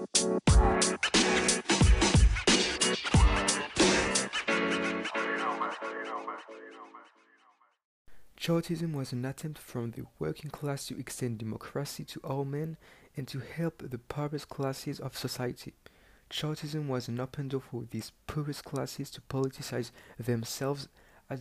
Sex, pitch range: male, 120-140 Hz